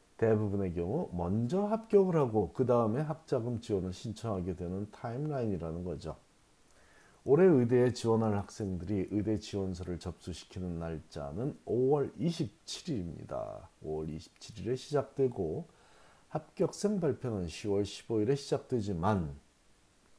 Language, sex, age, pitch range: Korean, male, 40-59, 95-140 Hz